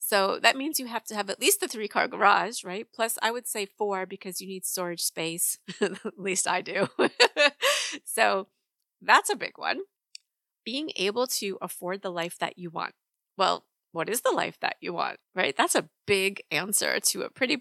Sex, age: female, 30-49